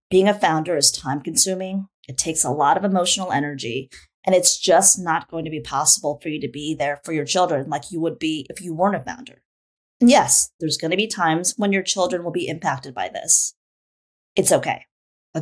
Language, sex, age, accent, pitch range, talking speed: English, female, 30-49, American, 150-185 Hz, 210 wpm